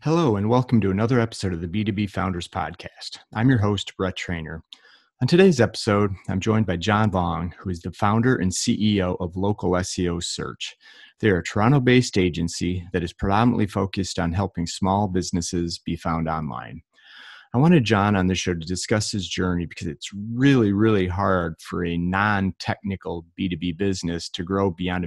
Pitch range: 85-105 Hz